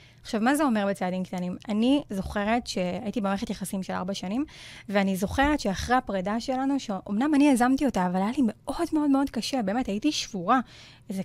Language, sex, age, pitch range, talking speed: Hebrew, female, 20-39, 190-250 Hz, 180 wpm